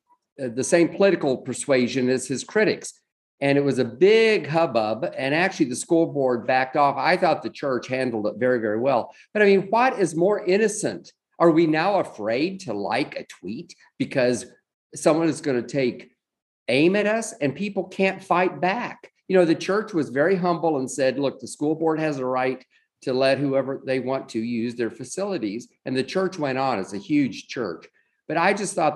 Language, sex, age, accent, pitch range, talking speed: English, male, 50-69, American, 130-185 Hz, 200 wpm